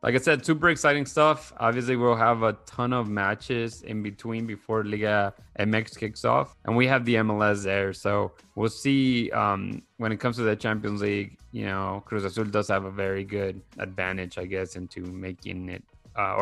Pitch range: 100-120 Hz